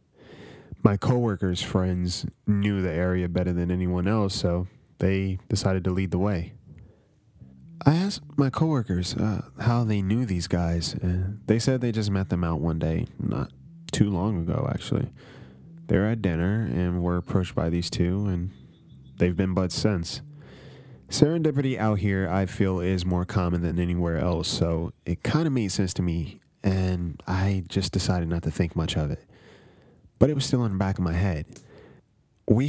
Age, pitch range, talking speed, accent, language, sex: 20-39, 90-110 Hz, 175 wpm, American, English, male